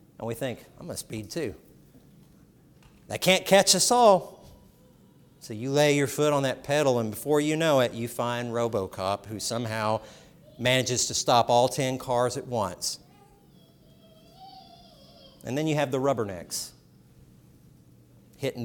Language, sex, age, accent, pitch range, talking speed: English, male, 50-69, American, 115-155 Hz, 150 wpm